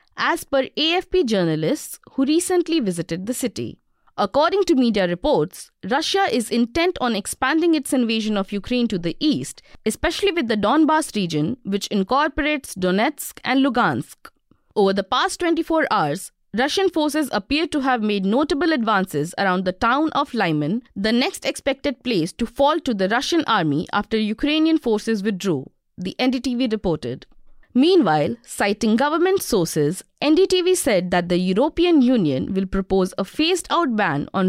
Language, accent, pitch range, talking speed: English, Indian, 195-305 Hz, 150 wpm